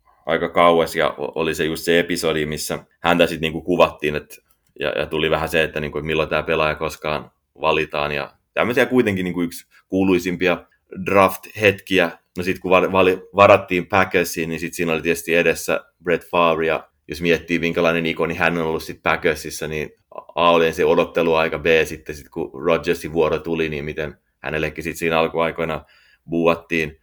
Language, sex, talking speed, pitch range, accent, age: Finnish, male, 175 wpm, 80-90 Hz, native, 30-49